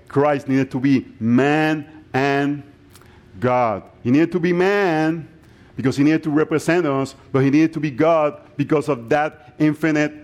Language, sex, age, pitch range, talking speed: English, male, 50-69, 120-155 Hz, 165 wpm